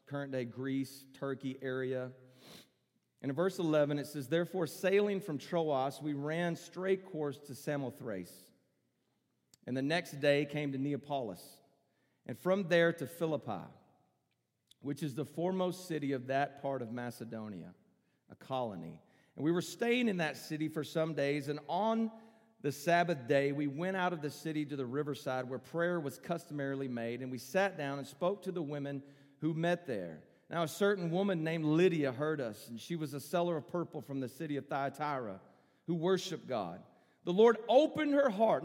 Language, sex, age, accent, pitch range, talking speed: English, male, 40-59, American, 140-190 Hz, 175 wpm